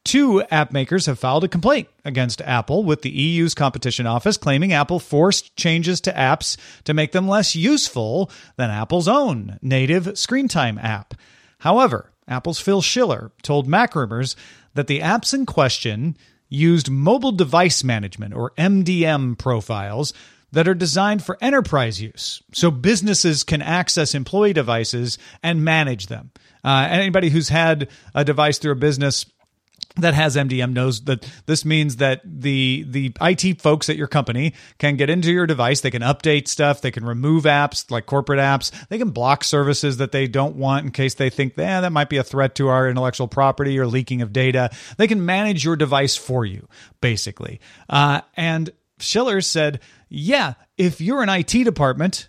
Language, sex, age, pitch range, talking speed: English, male, 40-59, 130-175 Hz, 170 wpm